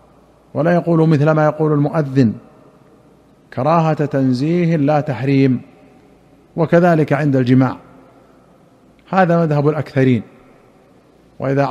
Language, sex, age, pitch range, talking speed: Arabic, male, 50-69, 135-150 Hz, 85 wpm